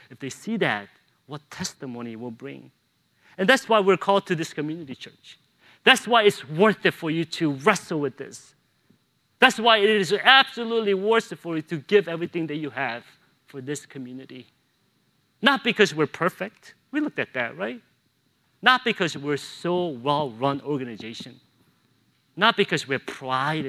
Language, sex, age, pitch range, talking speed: English, male, 40-59, 140-210 Hz, 165 wpm